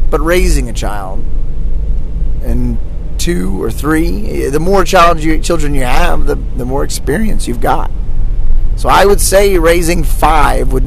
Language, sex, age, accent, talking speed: English, male, 30-49, American, 150 wpm